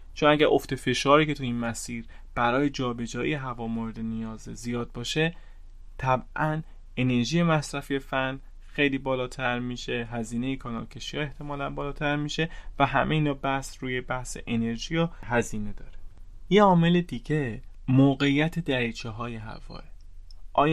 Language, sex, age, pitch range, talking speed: Persian, male, 30-49, 115-140 Hz, 125 wpm